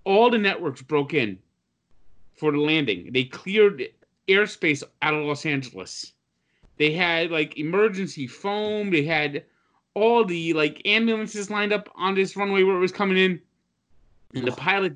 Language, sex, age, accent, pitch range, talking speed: English, male, 30-49, American, 135-175 Hz, 155 wpm